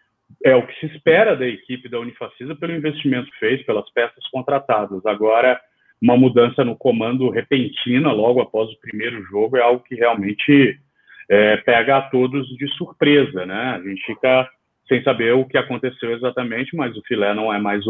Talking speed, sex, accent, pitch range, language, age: 175 wpm, male, Brazilian, 110-145 Hz, Portuguese, 30-49